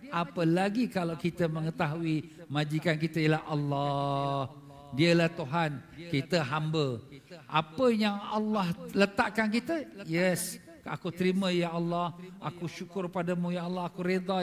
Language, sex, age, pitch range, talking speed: Malay, male, 50-69, 170-215 Hz, 125 wpm